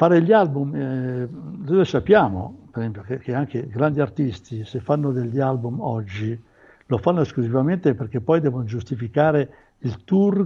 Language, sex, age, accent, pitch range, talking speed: Italian, male, 60-79, native, 120-155 Hz, 155 wpm